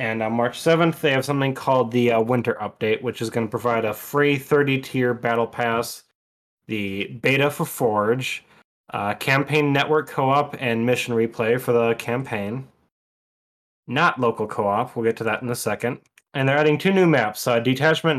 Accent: American